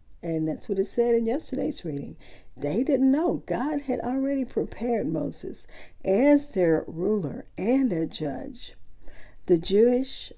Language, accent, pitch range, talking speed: English, American, 165-235 Hz, 140 wpm